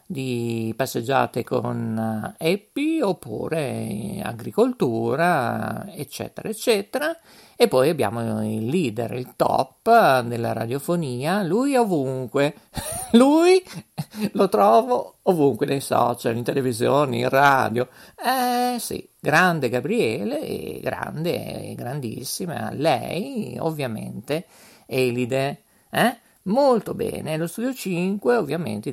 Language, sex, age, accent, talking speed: Italian, male, 50-69, native, 95 wpm